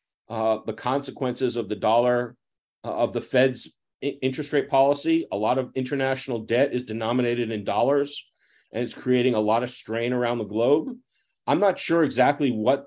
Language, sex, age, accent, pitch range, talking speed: English, male, 40-59, American, 115-145 Hz, 175 wpm